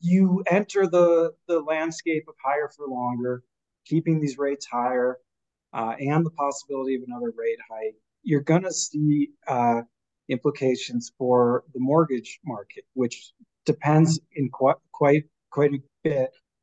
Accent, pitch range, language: American, 125-155 Hz, English